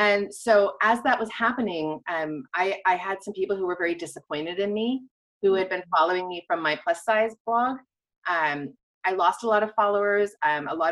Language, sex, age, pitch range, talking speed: English, female, 30-49, 190-265 Hz, 210 wpm